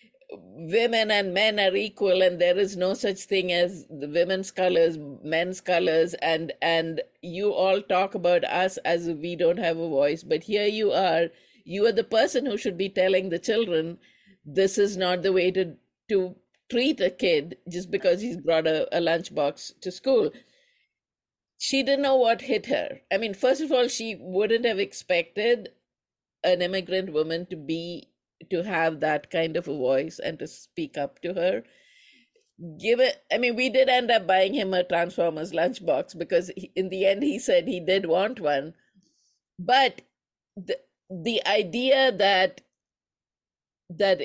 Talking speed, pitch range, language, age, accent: 170 wpm, 170-225 Hz, English, 50-69, Indian